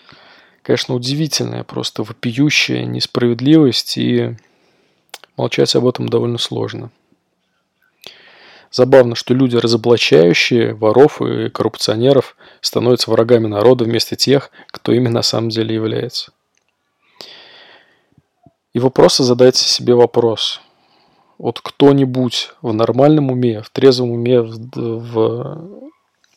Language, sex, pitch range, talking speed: Russian, male, 115-130 Hz, 100 wpm